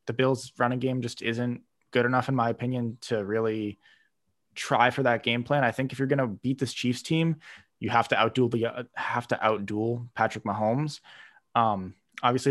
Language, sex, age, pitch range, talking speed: English, male, 20-39, 110-130 Hz, 190 wpm